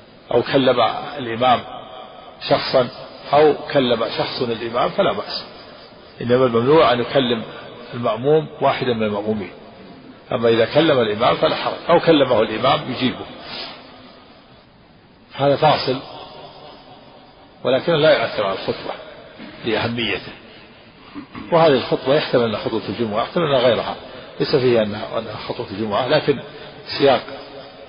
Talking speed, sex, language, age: 110 wpm, male, Arabic, 50-69